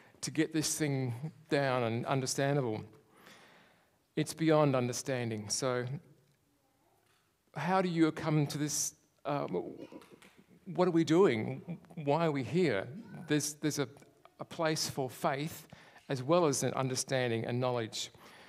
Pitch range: 130-155 Hz